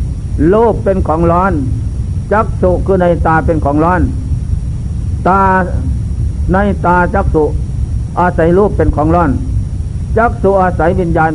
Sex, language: male, Thai